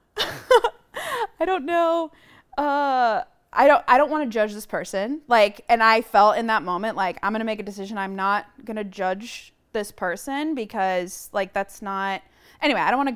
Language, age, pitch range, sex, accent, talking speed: English, 20-39, 195-245 Hz, female, American, 195 wpm